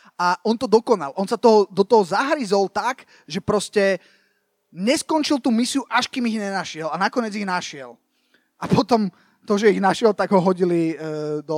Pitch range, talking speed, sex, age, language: 180-225 Hz, 175 wpm, male, 30-49, Slovak